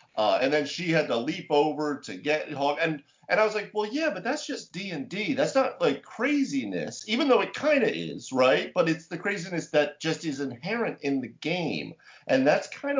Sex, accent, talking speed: male, American, 210 wpm